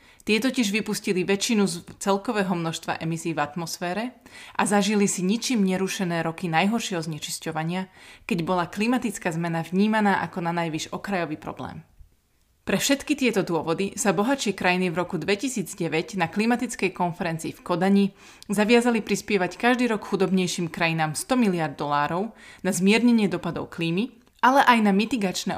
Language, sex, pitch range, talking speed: Slovak, female, 170-215 Hz, 140 wpm